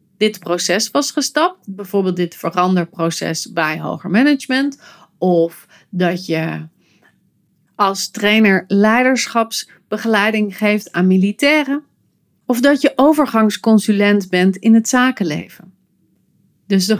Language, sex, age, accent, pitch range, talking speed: Dutch, female, 30-49, Dutch, 185-235 Hz, 100 wpm